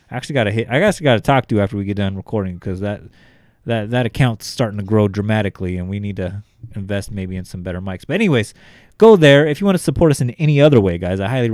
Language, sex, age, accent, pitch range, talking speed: English, male, 30-49, American, 100-120 Hz, 260 wpm